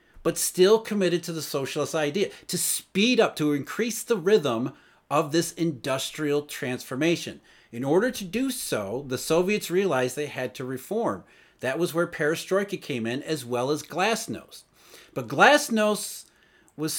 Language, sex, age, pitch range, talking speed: English, male, 40-59, 130-180 Hz, 150 wpm